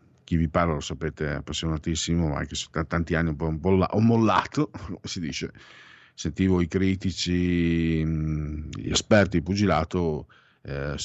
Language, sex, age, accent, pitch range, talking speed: Italian, male, 50-69, native, 80-115 Hz, 130 wpm